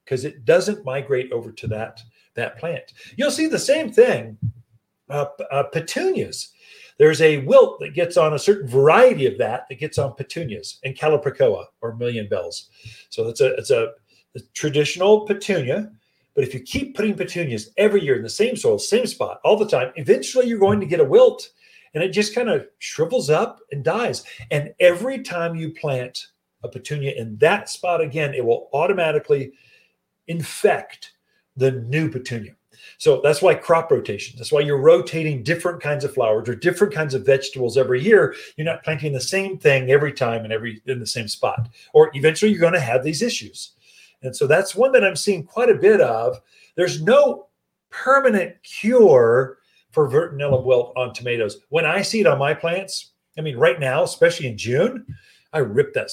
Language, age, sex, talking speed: English, 40-59, male, 185 wpm